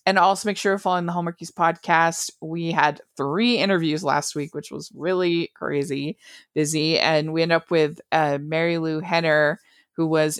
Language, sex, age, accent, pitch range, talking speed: English, female, 20-39, American, 150-190 Hz, 180 wpm